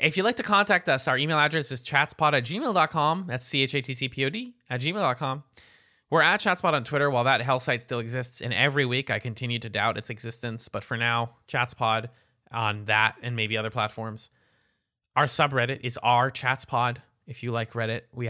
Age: 20-39